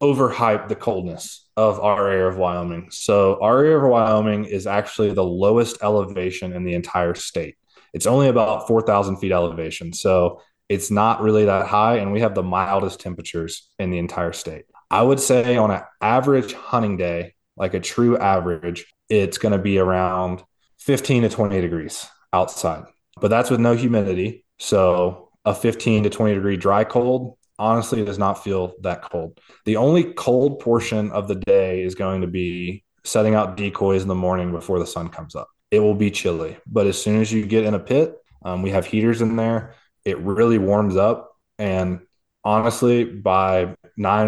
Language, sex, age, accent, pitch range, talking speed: English, male, 20-39, American, 95-115 Hz, 185 wpm